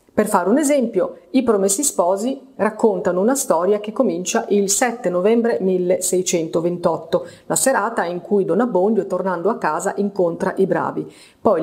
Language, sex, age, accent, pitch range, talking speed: Italian, female, 30-49, native, 175-225 Hz, 150 wpm